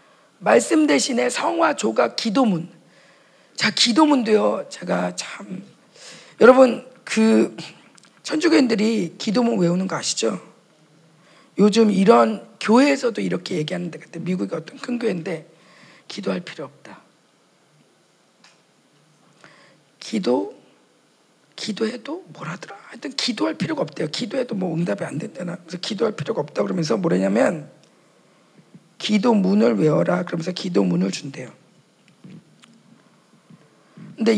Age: 40-59